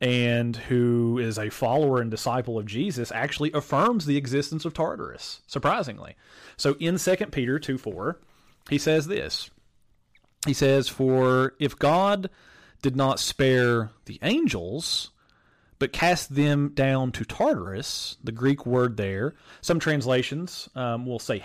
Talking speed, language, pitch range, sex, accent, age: 135 wpm, English, 115-145 Hz, male, American, 30-49